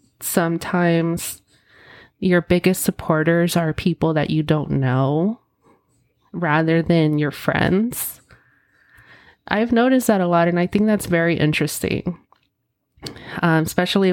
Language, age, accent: English, 30-49, American